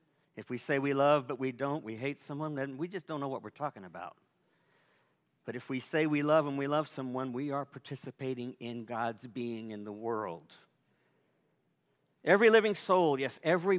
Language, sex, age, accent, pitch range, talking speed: English, male, 50-69, American, 140-180 Hz, 190 wpm